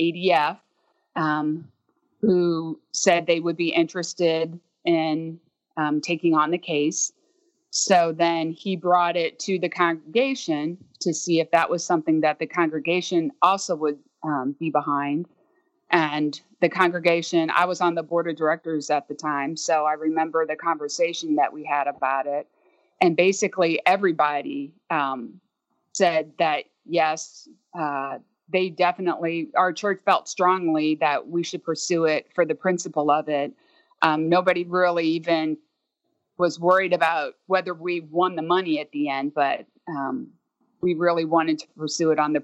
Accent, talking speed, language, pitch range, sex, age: American, 155 wpm, English, 155-180 Hz, female, 30-49